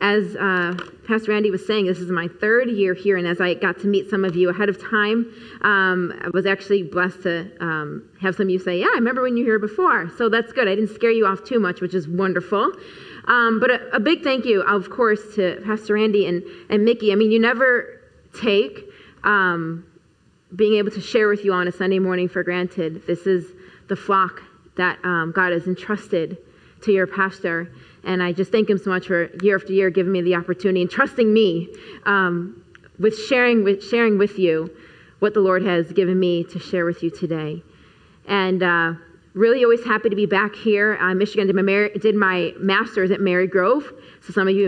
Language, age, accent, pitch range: English, 30-49, American, 180-210 Hz